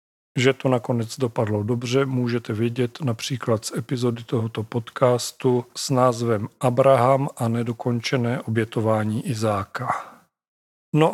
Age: 40-59